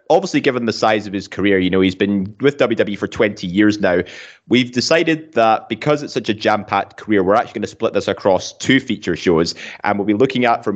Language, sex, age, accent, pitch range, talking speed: English, male, 20-39, British, 100-125 Hz, 235 wpm